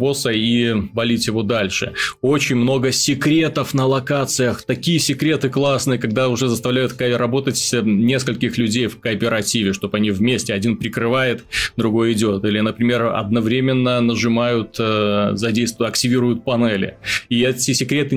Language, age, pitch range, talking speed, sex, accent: Russian, 20-39, 115-135 Hz, 120 wpm, male, native